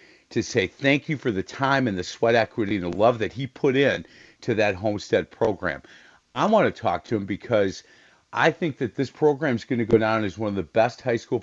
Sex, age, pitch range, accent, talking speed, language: male, 50-69, 110-140 Hz, American, 240 wpm, English